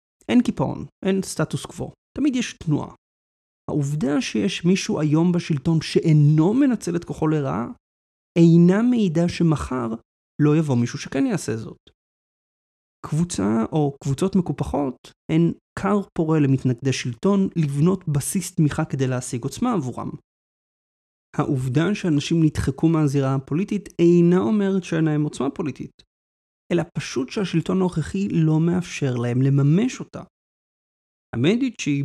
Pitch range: 130-170 Hz